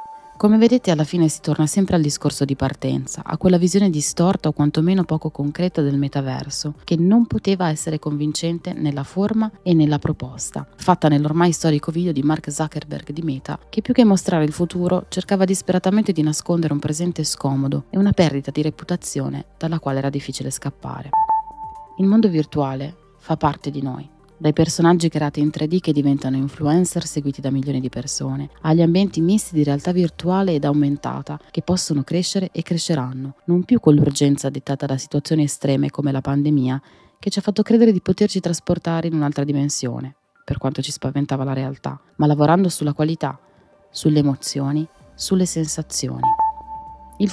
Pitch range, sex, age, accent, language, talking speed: 145-180 Hz, female, 30-49, native, Italian, 170 wpm